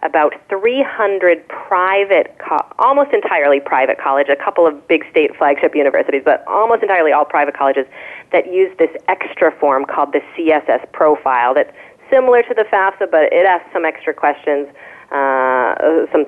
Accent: American